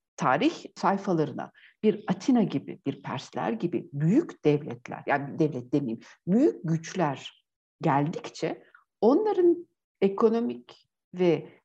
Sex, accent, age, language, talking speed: female, native, 60-79, Turkish, 100 wpm